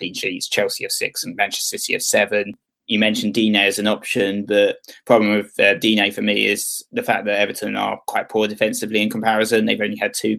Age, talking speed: 20-39, 225 wpm